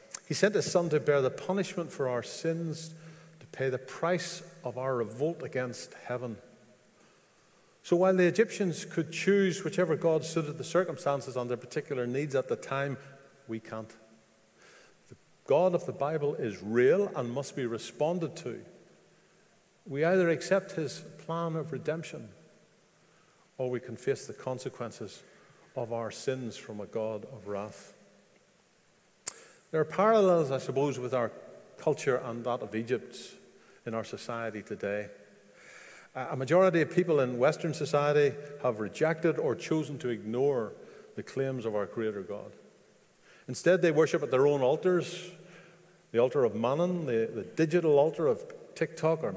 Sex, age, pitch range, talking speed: male, 50-69, 125-170 Hz, 155 wpm